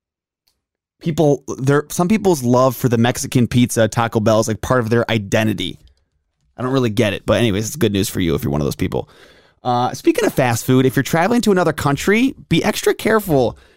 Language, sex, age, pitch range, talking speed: English, male, 20-39, 115-150 Hz, 215 wpm